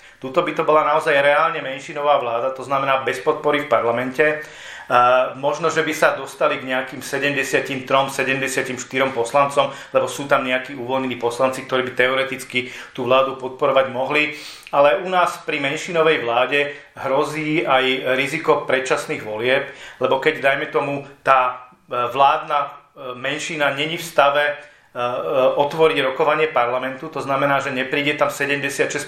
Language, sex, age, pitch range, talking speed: Czech, male, 40-59, 130-150 Hz, 140 wpm